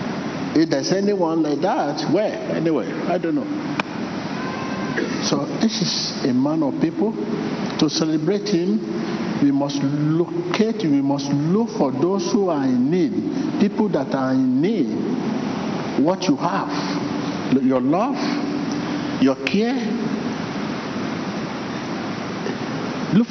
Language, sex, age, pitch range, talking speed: English, male, 60-79, 145-240 Hz, 115 wpm